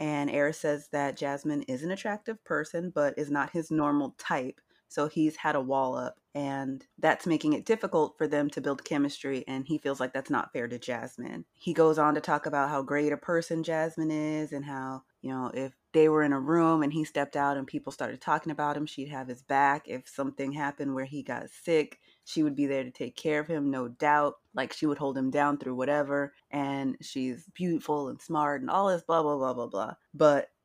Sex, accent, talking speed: female, American, 225 wpm